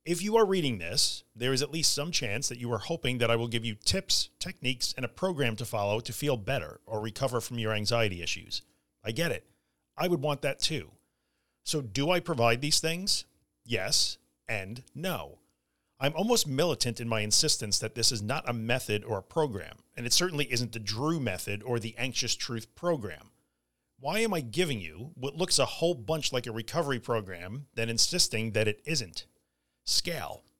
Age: 40-59